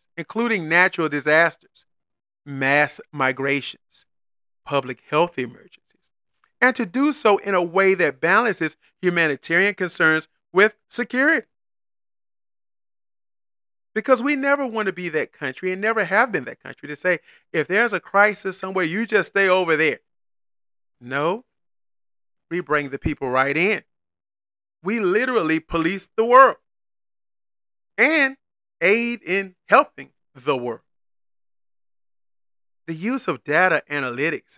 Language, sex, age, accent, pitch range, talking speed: English, male, 40-59, American, 130-195 Hz, 120 wpm